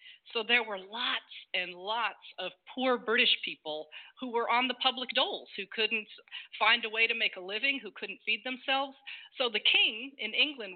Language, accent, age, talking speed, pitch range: English, American, 40-59, 190 wpm, 200-260 Hz